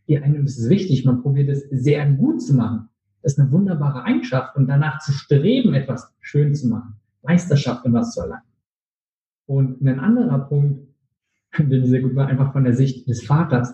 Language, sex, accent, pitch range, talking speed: German, male, German, 125-155 Hz, 195 wpm